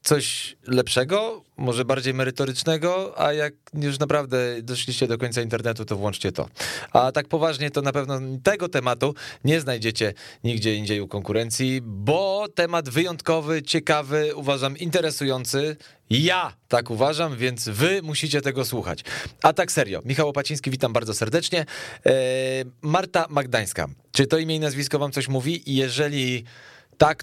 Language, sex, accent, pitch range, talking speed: Polish, male, native, 115-150 Hz, 140 wpm